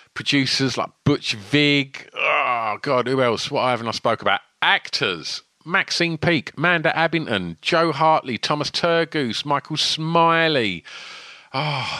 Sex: male